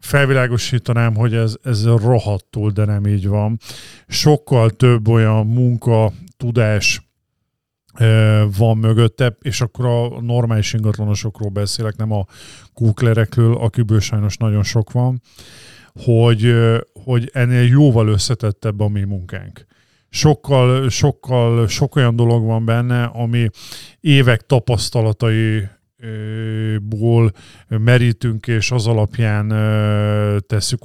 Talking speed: 105 wpm